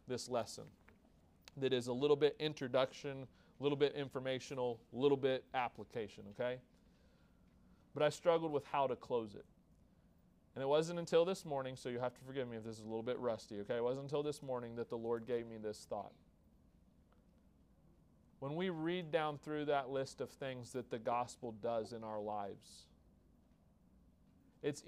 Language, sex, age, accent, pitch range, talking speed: English, male, 40-59, American, 125-150 Hz, 180 wpm